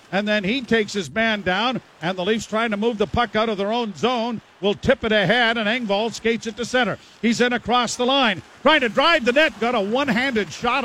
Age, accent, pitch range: 50-69, American, 195-230 Hz